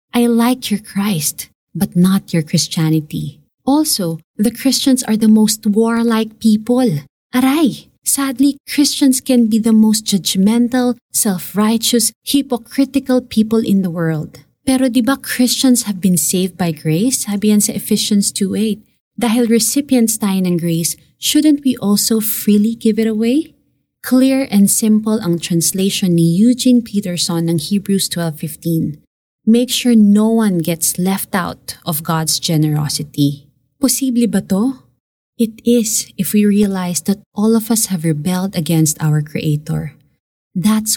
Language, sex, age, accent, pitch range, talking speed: Filipino, female, 20-39, native, 175-230 Hz, 135 wpm